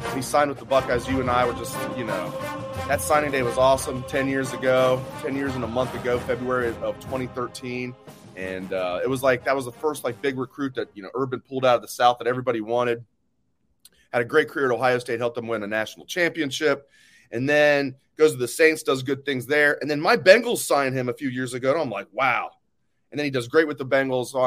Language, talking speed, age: English, 245 wpm, 30-49